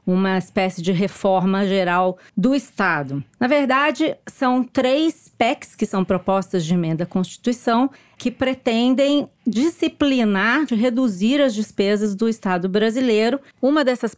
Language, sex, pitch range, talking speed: Portuguese, female, 190-240 Hz, 130 wpm